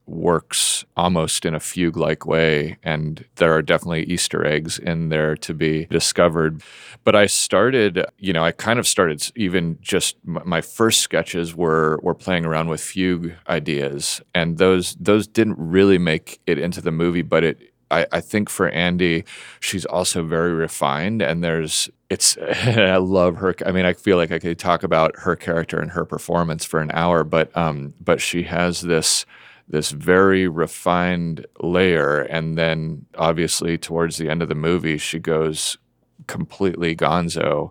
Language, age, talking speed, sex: English, 30-49, 165 wpm, male